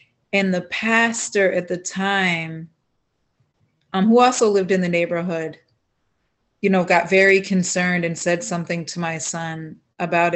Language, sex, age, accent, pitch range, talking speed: English, female, 30-49, American, 165-190 Hz, 145 wpm